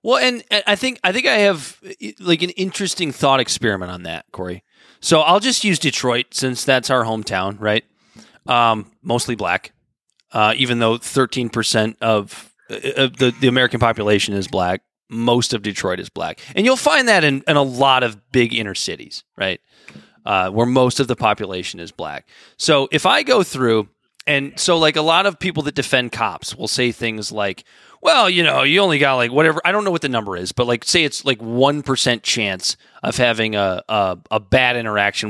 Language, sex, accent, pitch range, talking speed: English, male, American, 110-155 Hz, 195 wpm